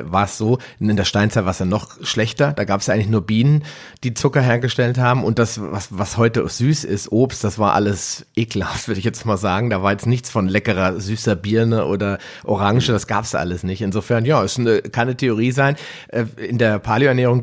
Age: 30-49